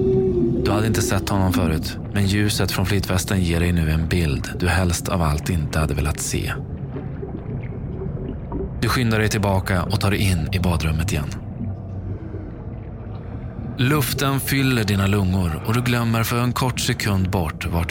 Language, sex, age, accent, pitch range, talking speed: Swedish, male, 20-39, native, 85-105 Hz, 160 wpm